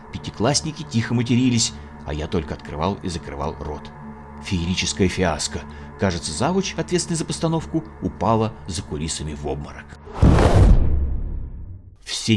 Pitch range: 75-105 Hz